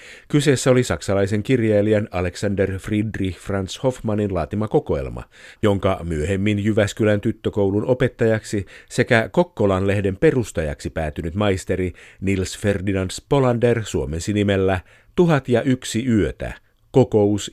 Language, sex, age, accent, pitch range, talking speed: Finnish, male, 50-69, native, 95-120 Hz, 100 wpm